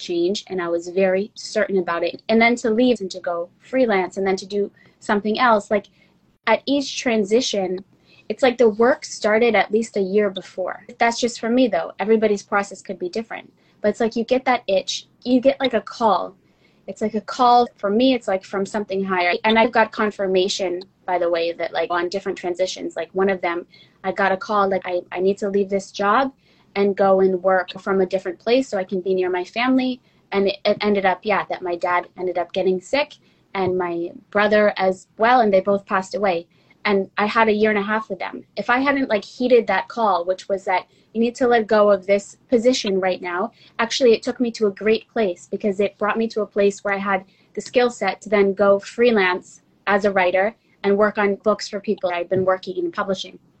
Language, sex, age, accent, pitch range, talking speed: English, female, 20-39, American, 190-225 Hz, 230 wpm